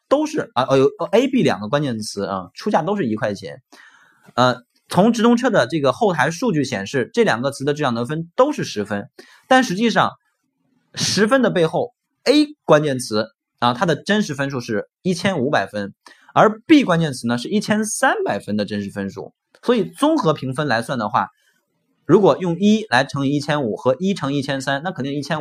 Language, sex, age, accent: Chinese, male, 20-39, native